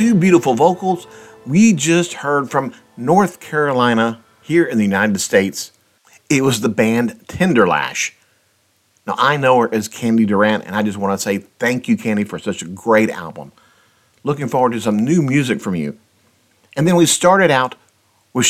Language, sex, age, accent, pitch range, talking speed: English, male, 50-69, American, 115-185 Hz, 175 wpm